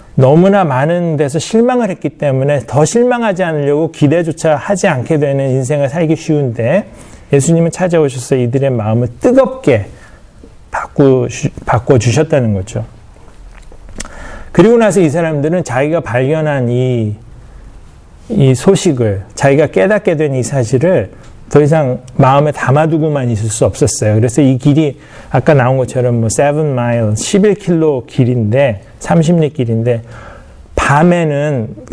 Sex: male